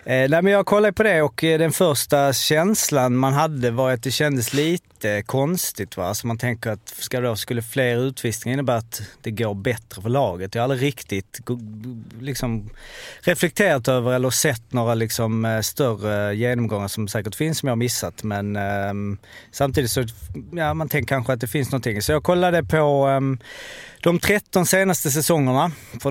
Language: Swedish